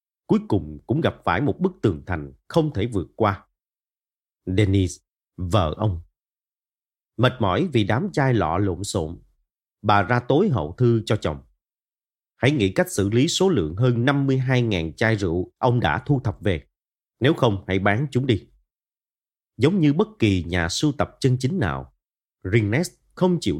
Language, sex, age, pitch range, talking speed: Vietnamese, male, 30-49, 95-130 Hz, 170 wpm